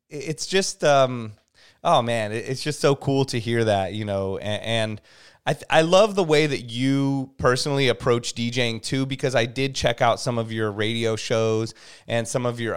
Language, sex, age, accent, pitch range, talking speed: English, male, 30-49, American, 115-135 Hz, 195 wpm